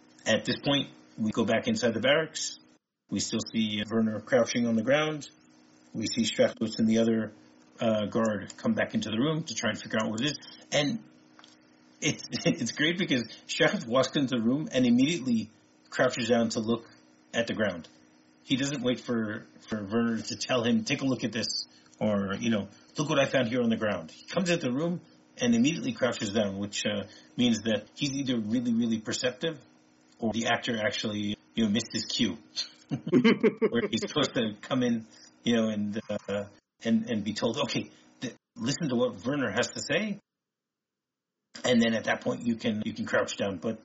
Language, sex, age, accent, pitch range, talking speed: English, male, 30-49, American, 95-155 Hz, 195 wpm